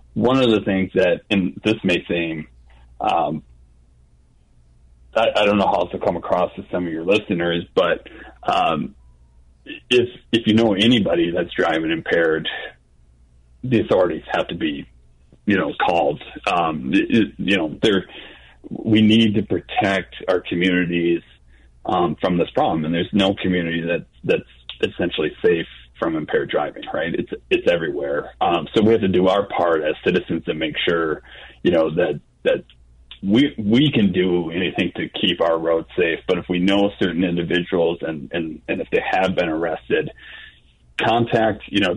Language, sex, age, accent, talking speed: English, male, 30-49, American, 165 wpm